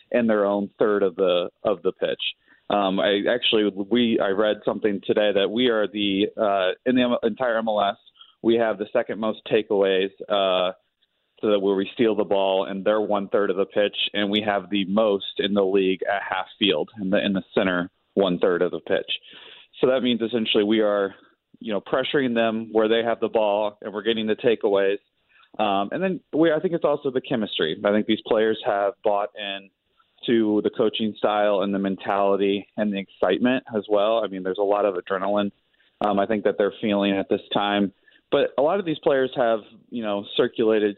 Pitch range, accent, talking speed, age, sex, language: 100-120 Hz, American, 210 wpm, 30-49, male, English